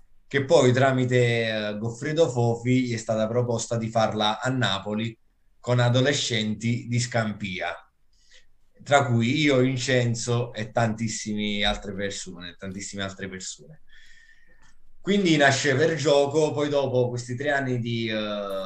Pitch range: 100-125 Hz